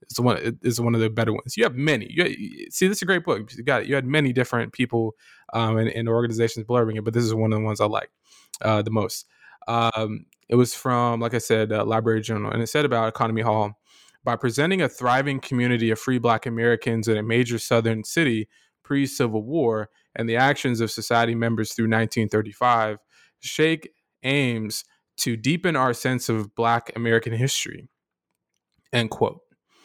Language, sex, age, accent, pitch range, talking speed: English, male, 20-39, American, 115-140 Hz, 195 wpm